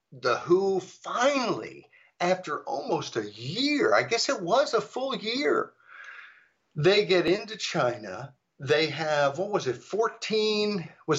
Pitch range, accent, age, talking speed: 140-210 Hz, American, 60-79, 135 wpm